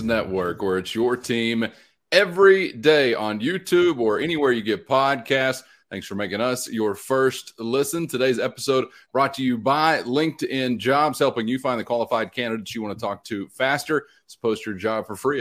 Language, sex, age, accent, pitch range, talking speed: English, male, 30-49, American, 110-140 Hz, 185 wpm